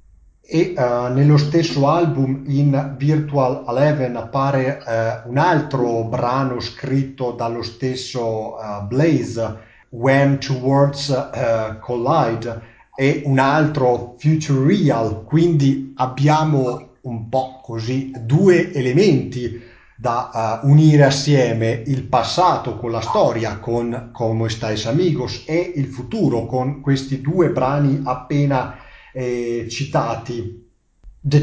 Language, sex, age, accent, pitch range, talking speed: Italian, male, 40-59, native, 120-150 Hz, 110 wpm